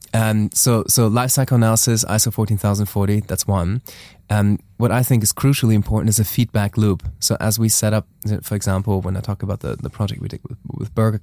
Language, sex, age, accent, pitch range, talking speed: English, male, 20-39, German, 100-115 Hz, 210 wpm